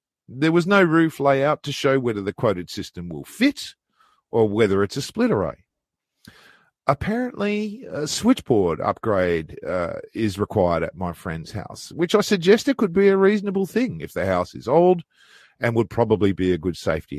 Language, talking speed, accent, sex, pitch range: English, 180 wpm, Australian, male, 95-150 Hz